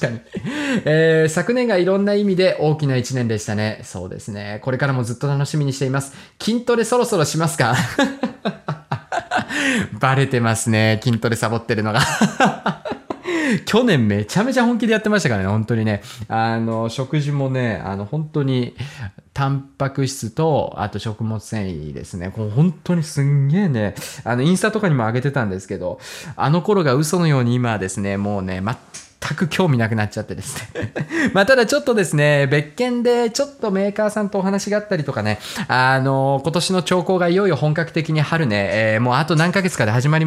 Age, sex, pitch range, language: 20-39, male, 120-195 Hz, Japanese